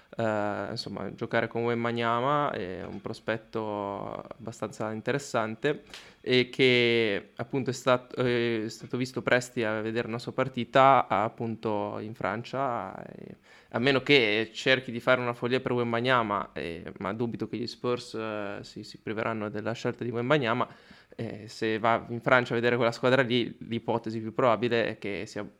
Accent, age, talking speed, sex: native, 20-39, 155 wpm, male